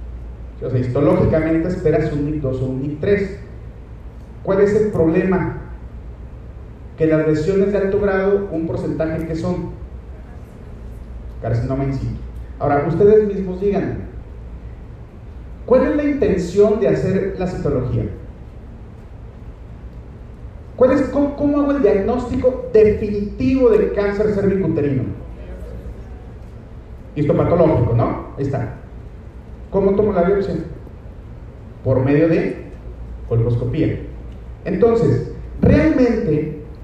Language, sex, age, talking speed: Spanish, male, 40-59, 100 wpm